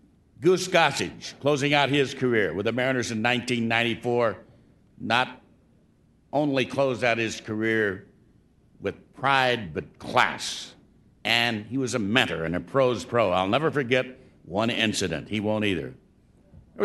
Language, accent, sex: English, American, male